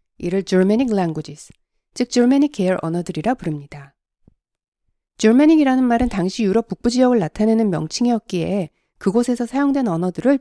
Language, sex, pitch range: Korean, female, 175-245 Hz